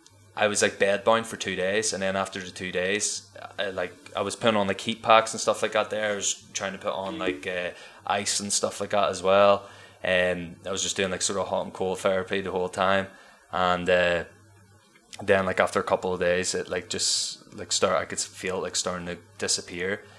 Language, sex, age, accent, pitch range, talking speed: English, male, 20-39, Irish, 90-105 Hz, 230 wpm